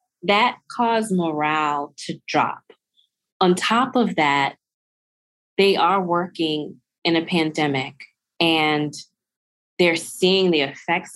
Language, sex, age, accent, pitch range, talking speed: English, female, 20-39, American, 150-190 Hz, 110 wpm